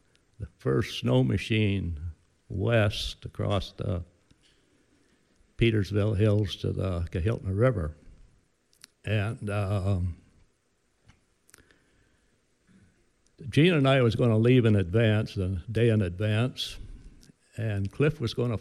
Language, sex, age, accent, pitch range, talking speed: English, male, 60-79, American, 100-120 Hz, 105 wpm